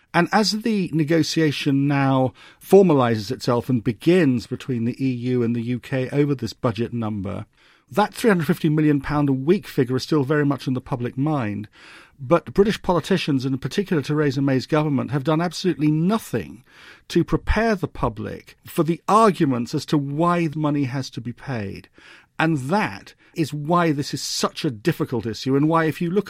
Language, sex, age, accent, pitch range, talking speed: English, male, 50-69, British, 130-165 Hz, 175 wpm